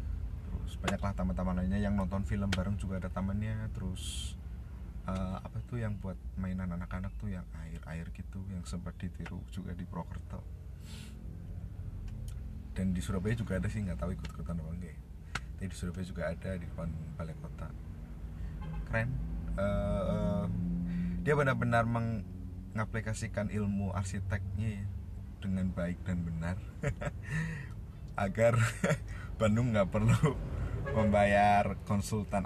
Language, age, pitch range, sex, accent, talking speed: Indonesian, 20-39, 85-100 Hz, male, native, 120 wpm